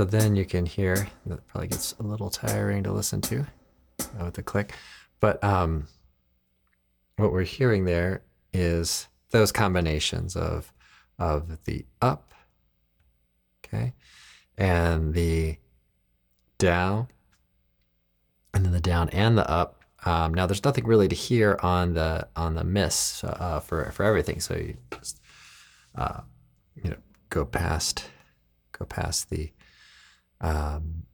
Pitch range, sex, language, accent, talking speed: 65-95 Hz, male, English, American, 135 wpm